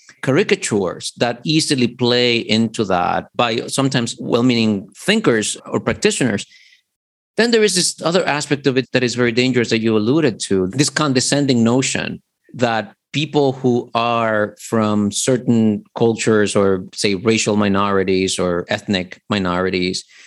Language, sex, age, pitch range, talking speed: English, male, 50-69, 100-125 Hz, 135 wpm